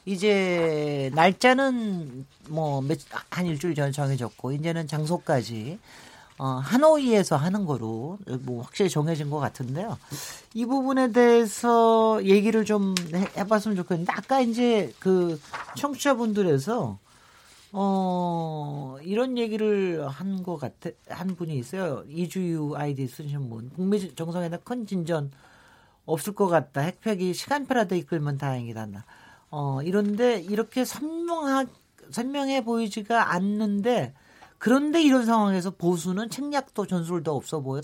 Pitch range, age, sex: 155-240 Hz, 40-59, male